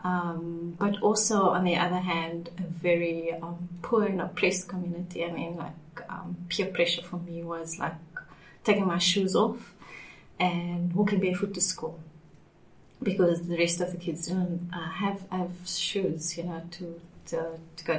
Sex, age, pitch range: female, 30-49, 170-195 Hz